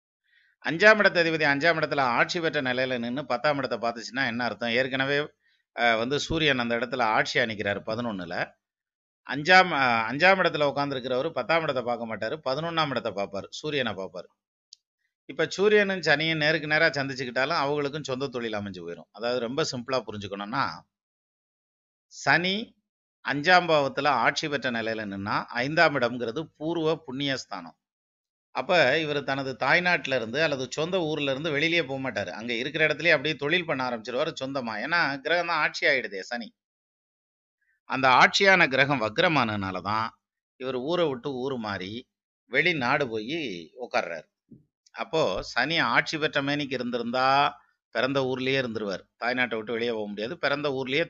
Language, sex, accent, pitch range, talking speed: Tamil, male, native, 115-155 Hz, 130 wpm